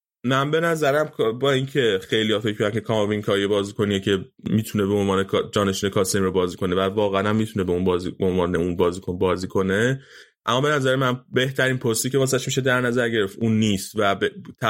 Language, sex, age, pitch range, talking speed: Persian, male, 20-39, 95-120 Hz, 205 wpm